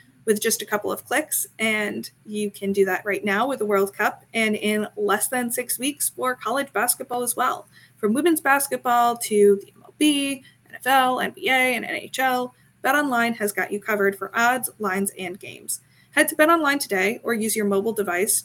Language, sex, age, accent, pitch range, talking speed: English, female, 20-39, American, 205-260 Hz, 190 wpm